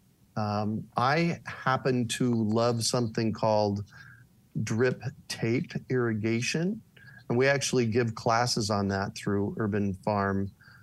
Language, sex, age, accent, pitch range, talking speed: English, male, 40-59, American, 105-130 Hz, 110 wpm